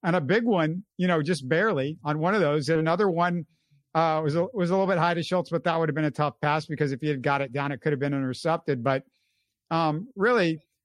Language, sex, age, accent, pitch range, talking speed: English, male, 50-69, American, 135-170 Hz, 265 wpm